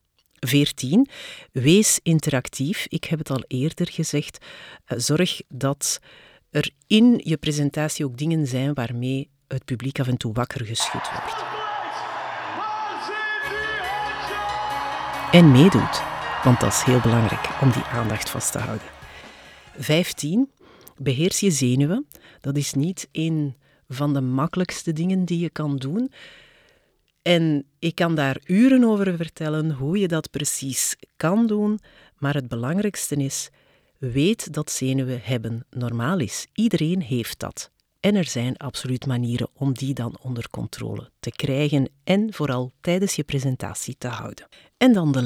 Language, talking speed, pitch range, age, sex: Dutch, 140 wpm, 130-185 Hz, 50-69, female